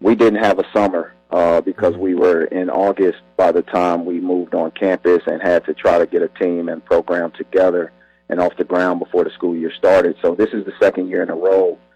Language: English